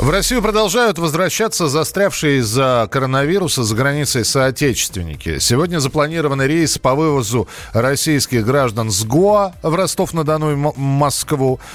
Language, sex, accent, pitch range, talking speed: Russian, male, native, 135-180 Hz, 115 wpm